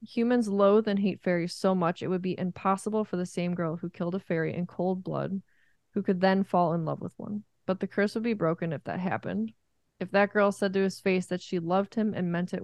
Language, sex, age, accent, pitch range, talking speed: English, female, 20-39, American, 170-205 Hz, 250 wpm